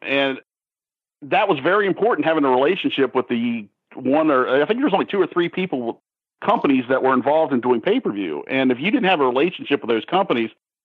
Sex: male